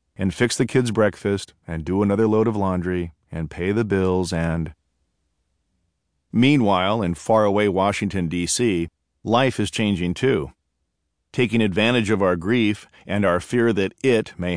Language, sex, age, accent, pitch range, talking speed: English, male, 40-59, American, 85-115 Hz, 150 wpm